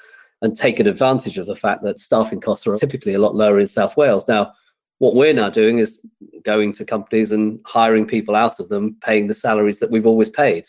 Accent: British